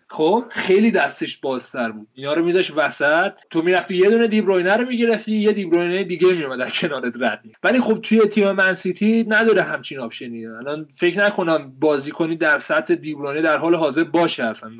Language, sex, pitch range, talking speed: Persian, male, 165-225 Hz, 180 wpm